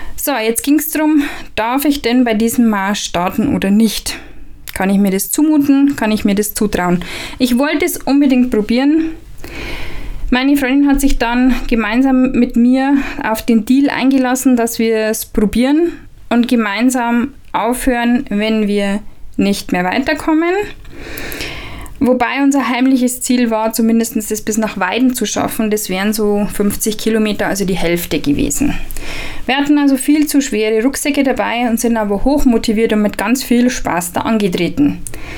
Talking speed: 160 wpm